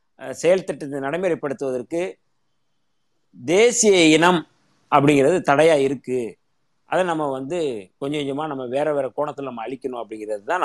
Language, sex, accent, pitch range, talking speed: Tamil, male, native, 140-185 Hz, 115 wpm